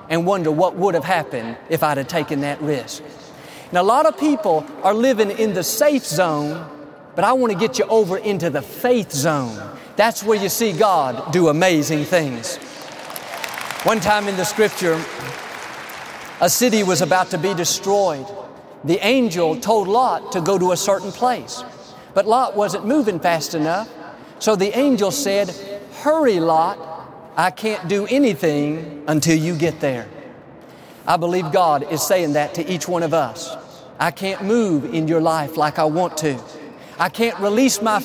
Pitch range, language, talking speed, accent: 160-215 Hz, English, 170 wpm, American